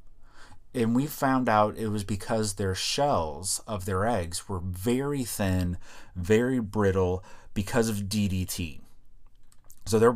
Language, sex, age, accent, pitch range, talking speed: English, male, 30-49, American, 95-120 Hz, 130 wpm